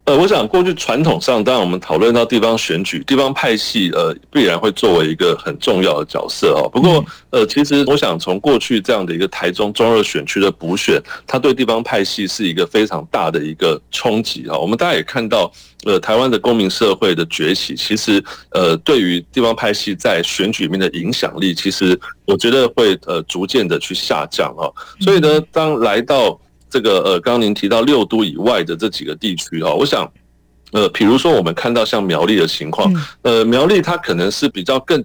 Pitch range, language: 90-135 Hz, Chinese